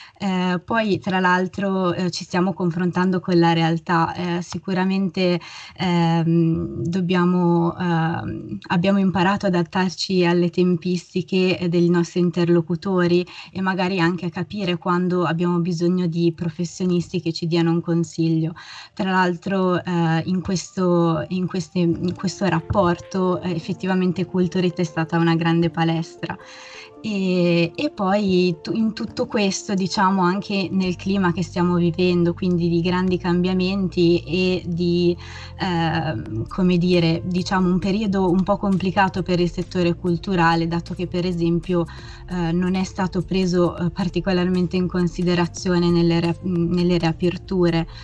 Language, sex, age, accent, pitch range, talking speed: Italian, female, 20-39, native, 170-185 Hz, 130 wpm